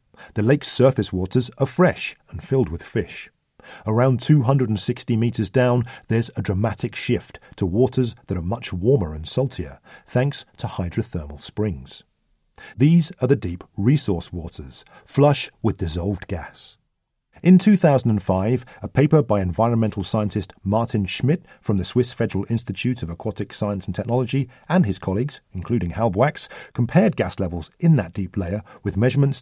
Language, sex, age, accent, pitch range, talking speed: English, male, 40-59, British, 100-135 Hz, 150 wpm